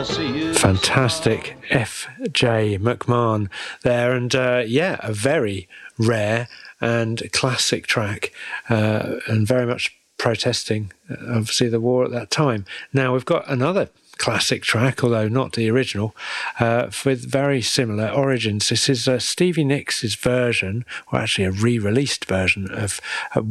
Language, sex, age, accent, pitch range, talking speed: English, male, 40-59, British, 110-130 Hz, 135 wpm